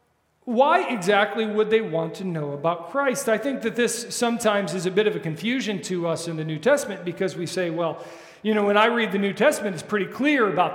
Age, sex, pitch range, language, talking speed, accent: 40-59, male, 180-220 Hz, English, 235 wpm, American